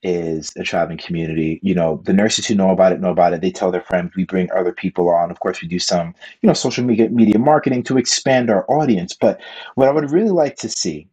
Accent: American